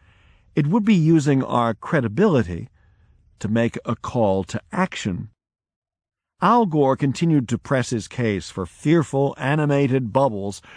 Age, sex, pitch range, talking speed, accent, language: 50-69, male, 100-140 Hz, 130 wpm, American, English